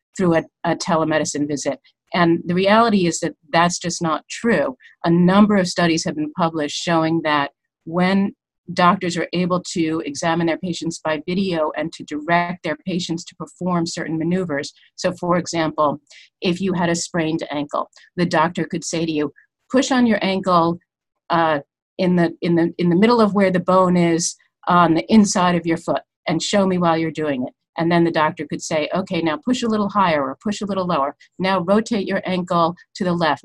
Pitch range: 155-185 Hz